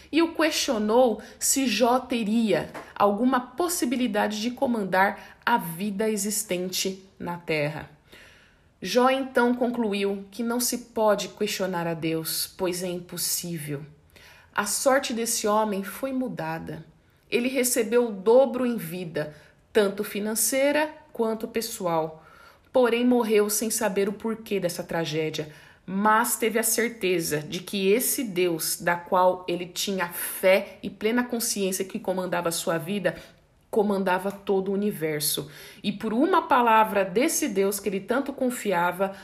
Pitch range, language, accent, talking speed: 180-235 Hz, Portuguese, Brazilian, 135 wpm